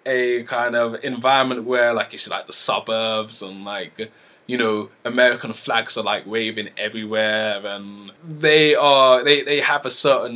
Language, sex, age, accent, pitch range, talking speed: English, male, 20-39, British, 115-155 Hz, 170 wpm